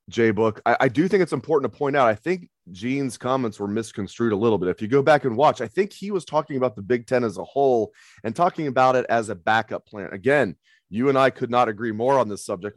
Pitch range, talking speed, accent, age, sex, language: 110-145 Hz, 275 wpm, American, 30-49, male, English